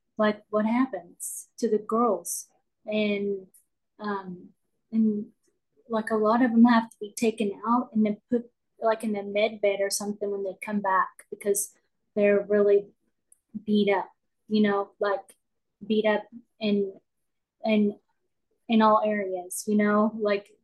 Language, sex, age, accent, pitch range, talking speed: English, female, 20-39, American, 205-225 Hz, 150 wpm